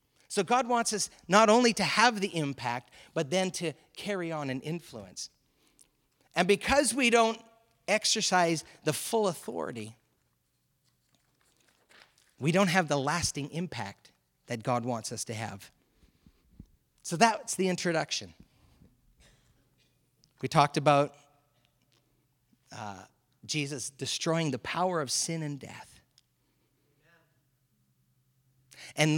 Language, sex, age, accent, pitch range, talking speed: English, male, 40-59, American, 120-180 Hz, 110 wpm